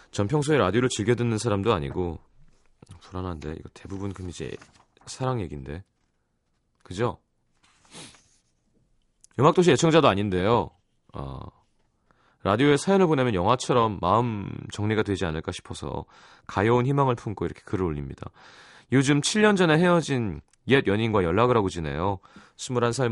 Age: 30-49